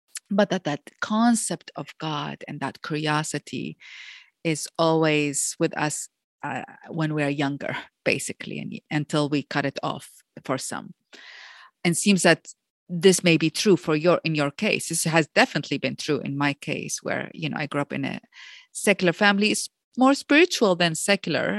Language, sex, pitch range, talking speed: English, female, 150-180 Hz, 175 wpm